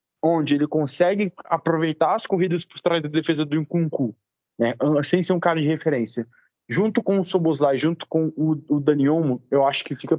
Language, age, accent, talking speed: Portuguese, 20-39, Brazilian, 190 wpm